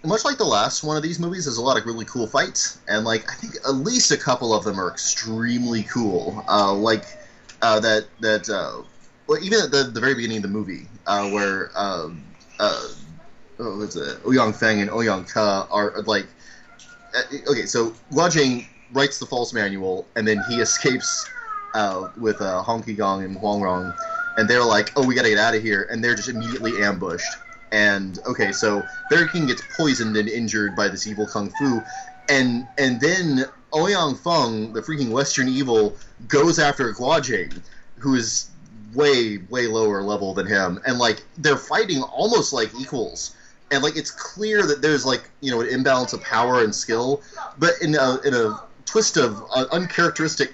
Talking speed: 190 wpm